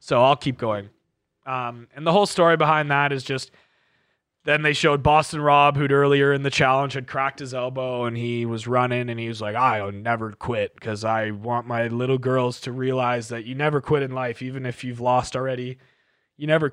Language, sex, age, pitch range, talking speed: English, male, 20-39, 125-155 Hz, 220 wpm